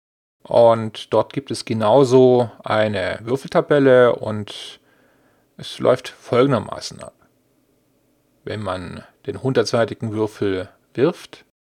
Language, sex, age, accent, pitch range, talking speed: German, male, 40-59, German, 105-140 Hz, 90 wpm